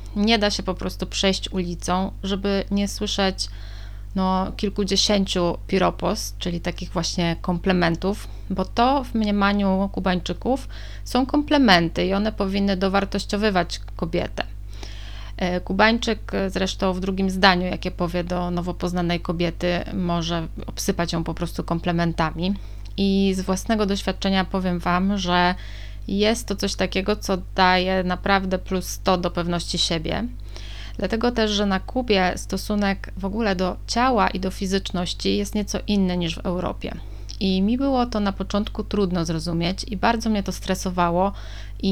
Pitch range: 175-205 Hz